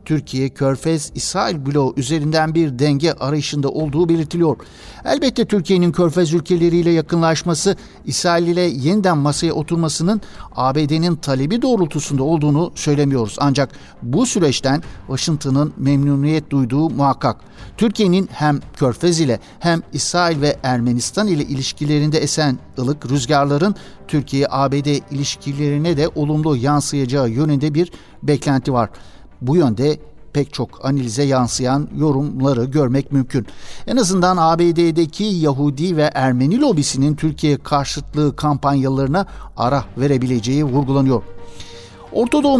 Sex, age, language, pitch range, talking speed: male, 60-79, Turkish, 140-175 Hz, 105 wpm